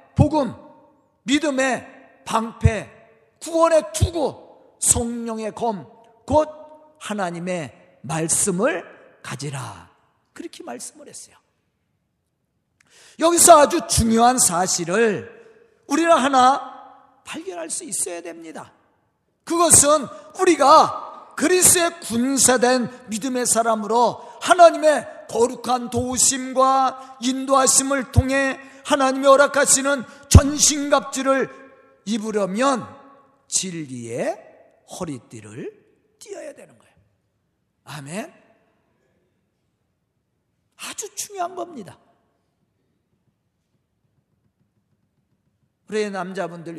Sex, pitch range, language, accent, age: male, 210-300 Hz, Korean, native, 40-59